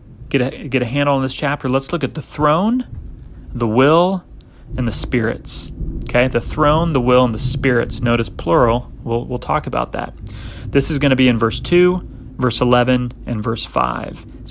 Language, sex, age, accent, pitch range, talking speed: English, male, 30-49, American, 115-140 Hz, 190 wpm